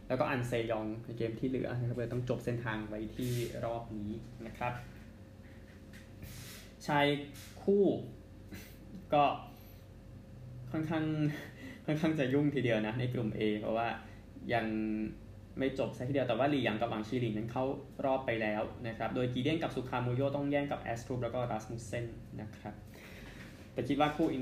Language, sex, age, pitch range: Thai, male, 20-39, 110-140 Hz